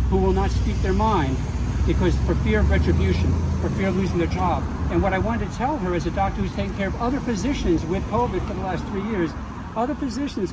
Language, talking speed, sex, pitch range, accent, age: English, 240 wpm, male, 130-215 Hz, American, 60-79